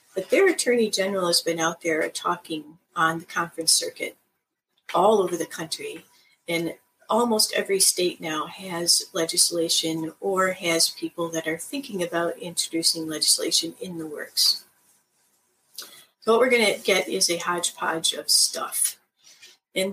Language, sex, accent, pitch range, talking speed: English, female, American, 170-225 Hz, 145 wpm